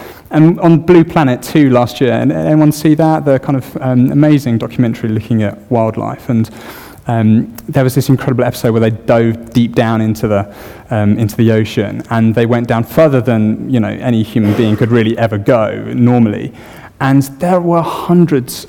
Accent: British